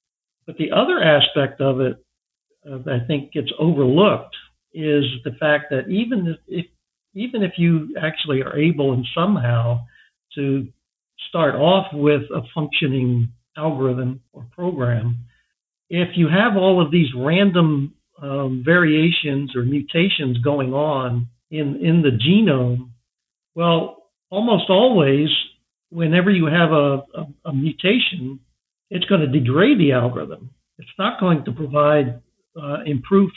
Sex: male